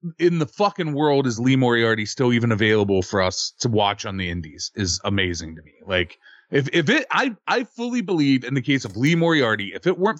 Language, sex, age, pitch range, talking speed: English, male, 30-49, 110-160 Hz, 225 wpm